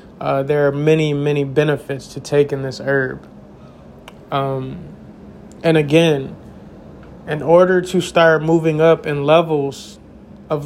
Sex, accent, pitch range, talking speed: male, American, 140-160 Hz, 125 wpm